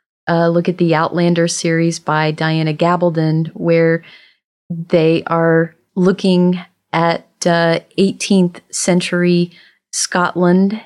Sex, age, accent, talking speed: female, 30-49, American, 100 wpm